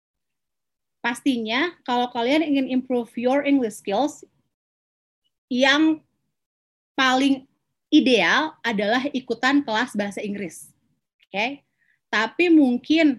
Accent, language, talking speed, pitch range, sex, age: native, Indonesian, 90 wpm, 225-285 Hz, female, 30-49